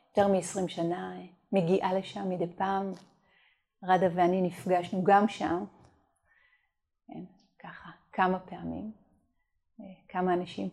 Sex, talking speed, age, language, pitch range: female, 95 wpm, 30-49, Hebrew, 175-210 Hz